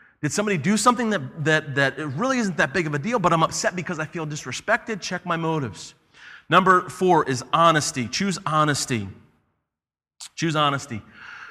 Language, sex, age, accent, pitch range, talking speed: English, male, 30-49, American, 120-160 Hz, 165 wpm